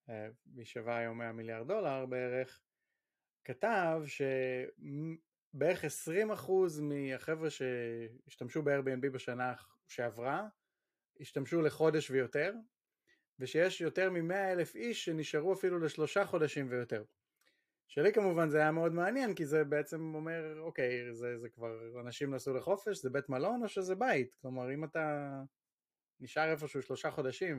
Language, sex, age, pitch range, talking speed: Hebrew, male, 30-49, 125-160 Hz, 125 wpm